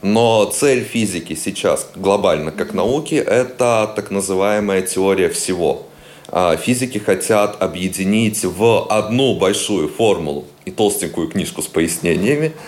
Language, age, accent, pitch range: Russian, 30-49, native, 85-110 Hz